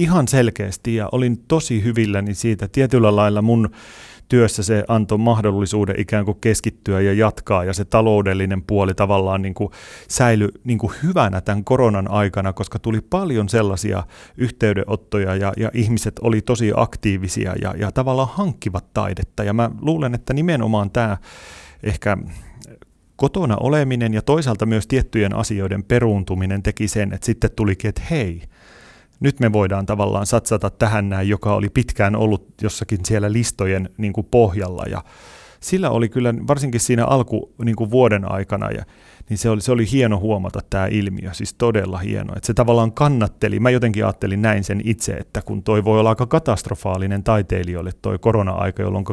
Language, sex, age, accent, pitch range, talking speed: Finnish, male, 30-49, native, 100-115 Hz, 155 wpm